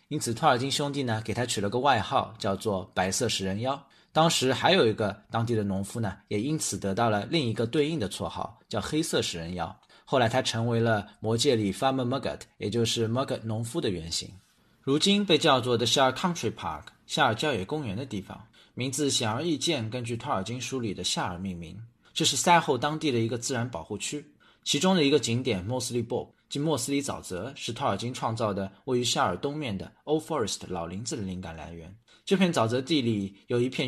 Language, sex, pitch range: Chinese, male, 100-135 Hz